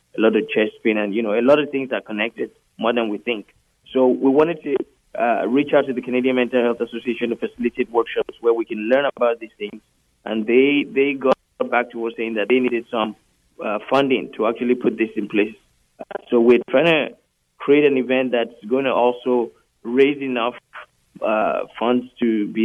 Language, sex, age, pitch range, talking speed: English, male, 20-39, 115-130 Hz, 210 wpm